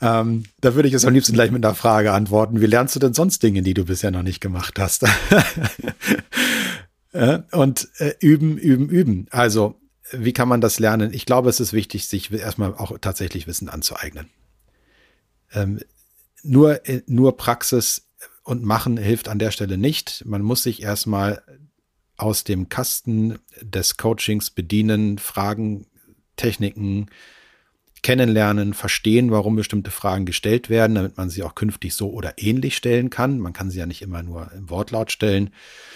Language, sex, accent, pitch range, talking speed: German, male, German, 100-120 Hz, 160 wpm